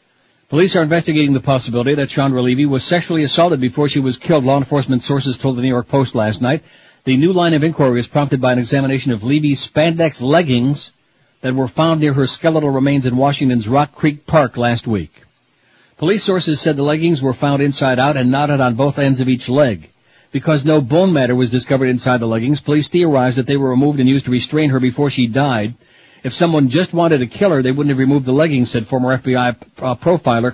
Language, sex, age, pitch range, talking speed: English, male, 60-79, 130-150 Hz, 215 wpm